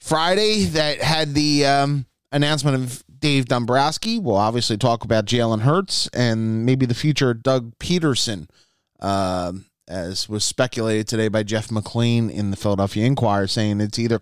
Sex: male